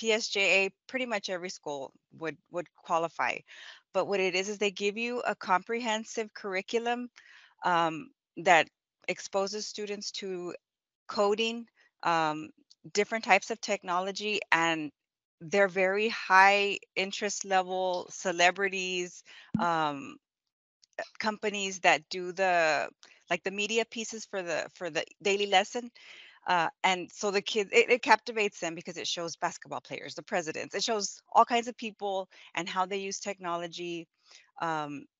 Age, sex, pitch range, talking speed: 20-39, female, 175-210 Hz, 135 wpm